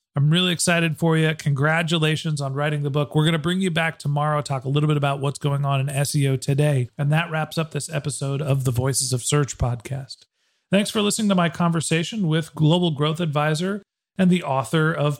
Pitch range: 145-175 Hz